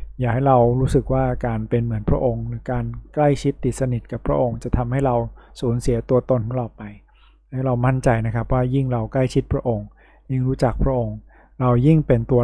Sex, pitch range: male, 115-130 Hz